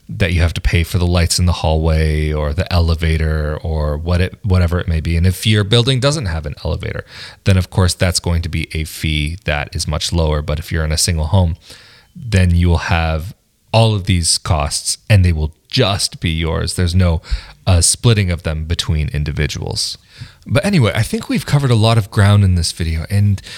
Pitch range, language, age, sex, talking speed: 85-125 Hz, English, 30-49, male, 215 wpm